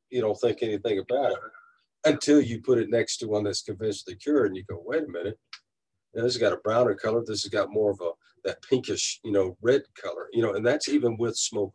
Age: 50-69